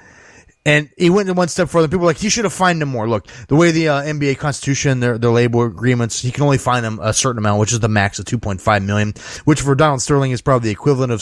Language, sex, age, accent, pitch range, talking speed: English, male, 20-39, American, 110-145 Hz, 270 wpm